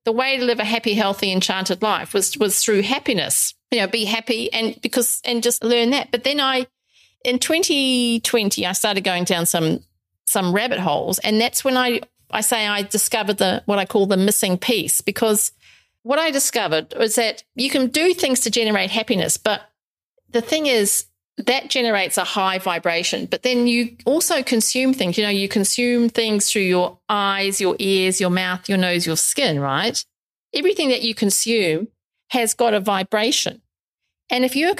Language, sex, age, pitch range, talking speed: English, female, 40-59, 185-240 Hz, 185 wpm